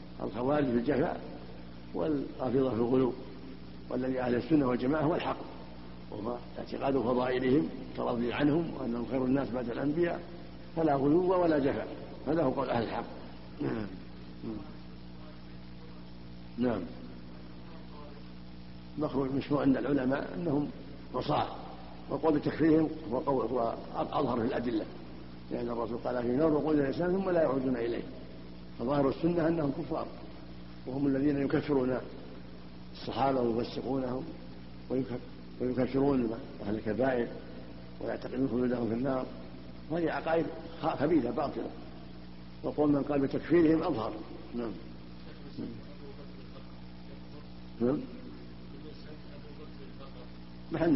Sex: male